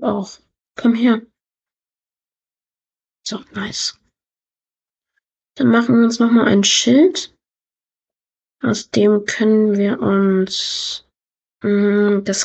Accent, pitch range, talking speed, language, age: German, 205-240 Hz, 95 wpm, German, 20-39